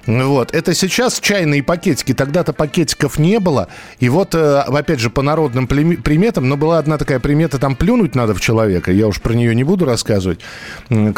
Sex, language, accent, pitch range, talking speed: male, Russian, native, 115-150 Hz, 175 wpm